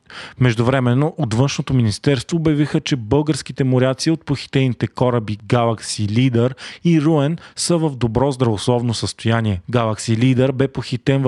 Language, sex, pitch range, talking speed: Bulgarian, male, 115-145 Hz, 135 wpm